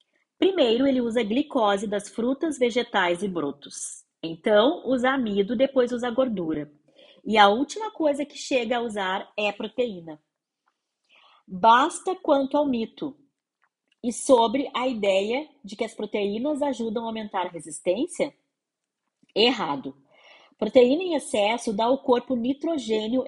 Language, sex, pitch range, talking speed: Portuguese, female, 200-275 Hz, 135 wpm